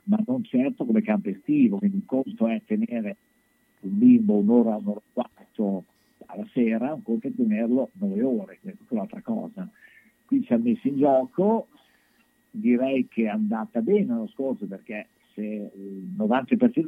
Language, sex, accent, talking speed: Italian, male, native, 155 wpm